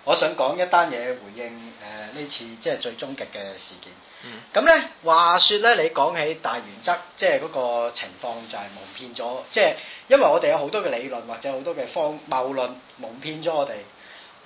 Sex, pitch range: male, 125-195 Hz